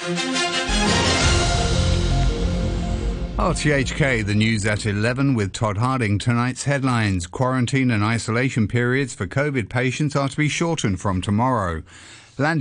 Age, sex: 50-69, male